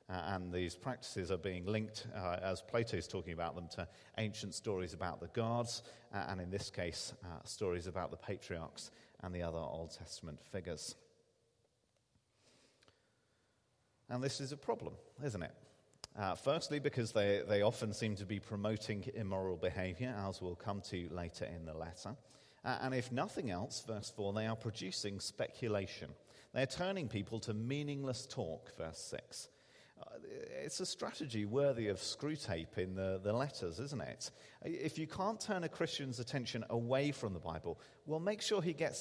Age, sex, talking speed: 40-59, male, 170 wpm